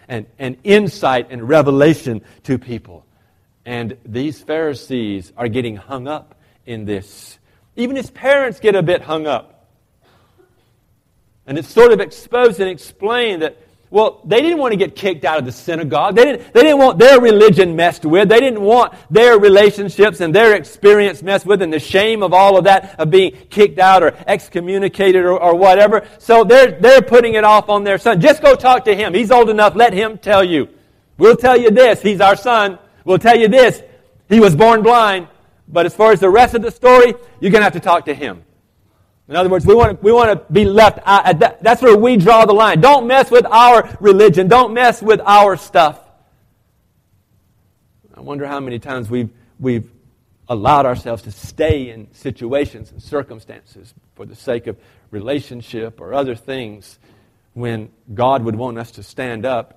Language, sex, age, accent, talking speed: English, male, 40-59, American, 190 wpm